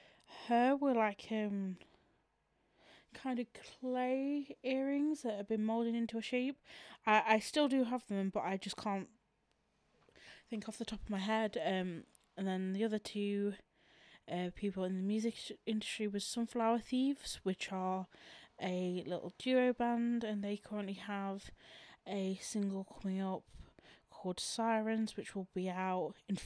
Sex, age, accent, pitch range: female, 20-39, British, 195-240 Hz